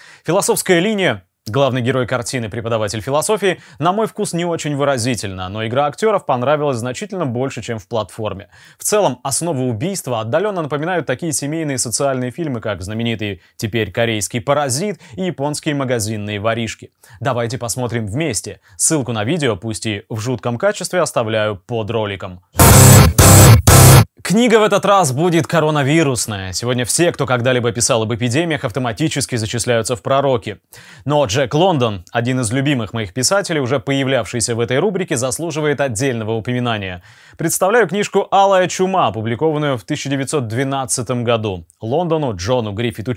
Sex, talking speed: male, 140 wpm